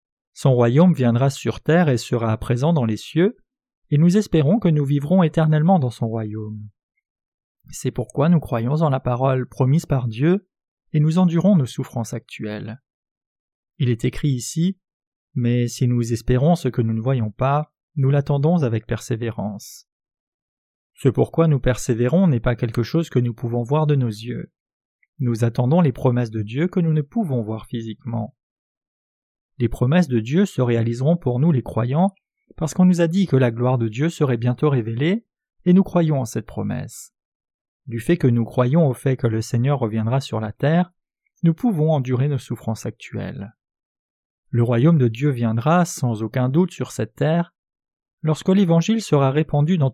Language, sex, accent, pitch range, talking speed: French, male, French, 120-165 Hz, 180 wpm